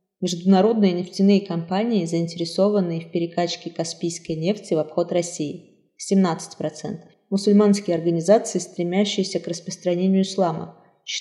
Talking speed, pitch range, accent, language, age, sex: 95 wpm, 165-195 Hz, native, Russian, 20-39, female